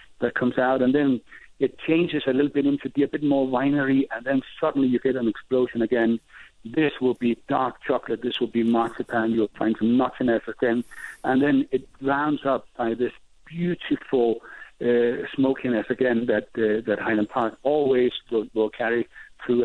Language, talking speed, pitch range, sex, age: English, 180 wpm, 120-140 Hz, male, 60-79